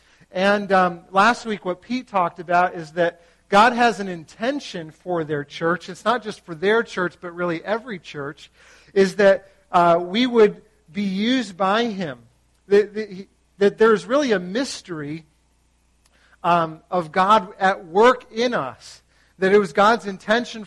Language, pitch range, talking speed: English, 175-220 Hz, 155 wpm